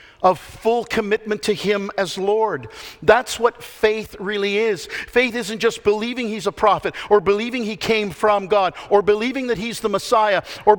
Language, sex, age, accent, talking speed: English, male, 50-69, American, 180 wpm